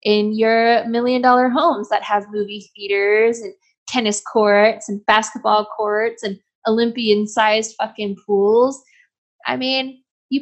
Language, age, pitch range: English, 10-29, 200-235 Hz